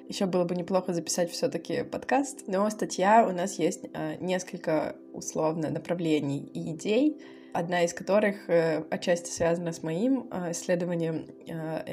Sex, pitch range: female, 170-210 Hz